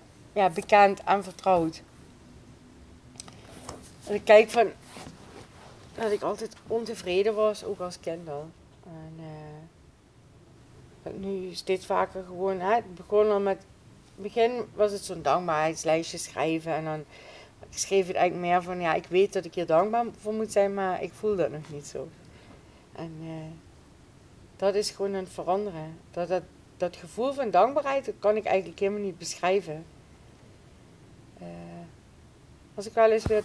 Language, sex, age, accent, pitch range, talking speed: Dutch, female, 40-59, Dutch, 175-210 Hz, 145 wpm